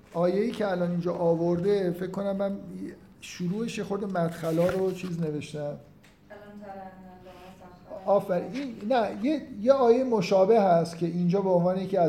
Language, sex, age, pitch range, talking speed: Persian, male, 50-69, 155-190 Hz, 130 wpm